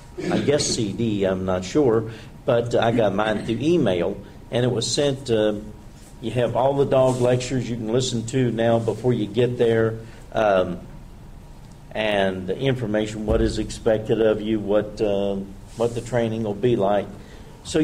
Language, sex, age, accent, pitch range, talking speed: English, male, 50-69, American, 100-130 Hz, 170 wpm